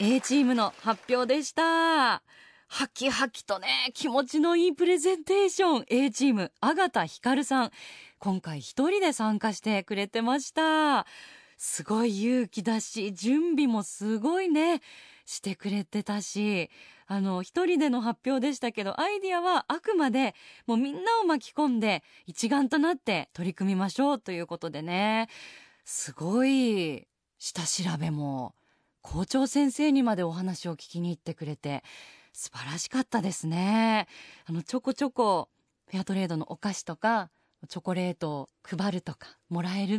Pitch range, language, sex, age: 185-275 Hz, Japanese, female, 20-39